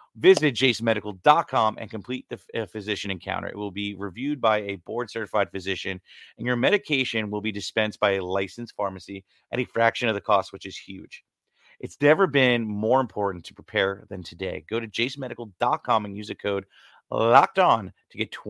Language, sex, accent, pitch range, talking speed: English, male, American, 95-120 Hz, 175 wpm